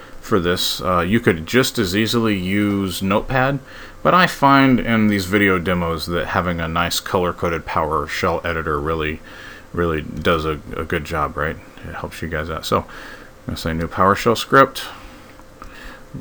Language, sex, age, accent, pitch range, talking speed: English, male, 40-59, American, 85-110 Hz, 165 wpm